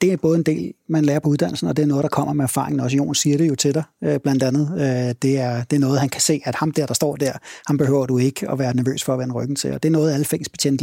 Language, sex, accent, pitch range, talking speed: Danish, male, native, 130-155 Hz, 330 wpm